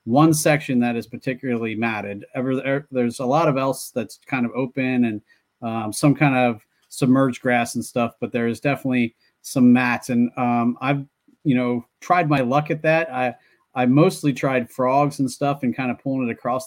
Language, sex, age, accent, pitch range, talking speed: English, male, 30-49, American, 115-135 Hz, 195 wpm